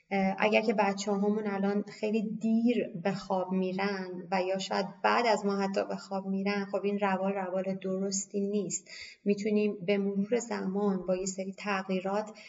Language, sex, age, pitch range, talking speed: Persian, female, 20-39, 190-220 Hz, 165 wpm